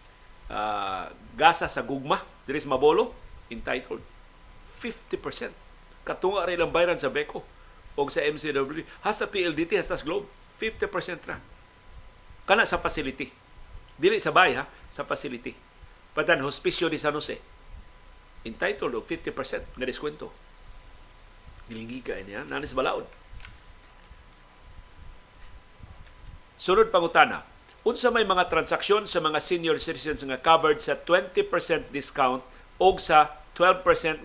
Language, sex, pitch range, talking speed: Filipino, male, 150-230 Hz, 115 wpm